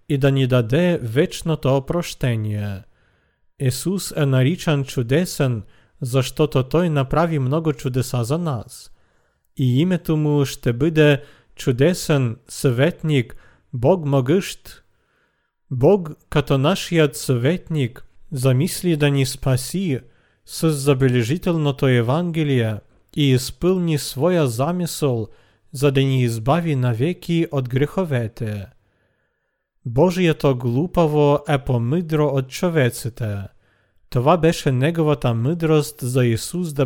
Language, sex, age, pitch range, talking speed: Bulgarian, male, 40-59, 125-155 Hz, 100 wpm